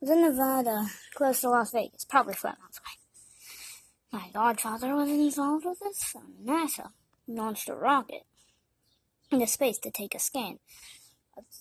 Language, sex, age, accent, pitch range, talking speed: English, female, 10-29, American, 200-280 Hz, 155 wpm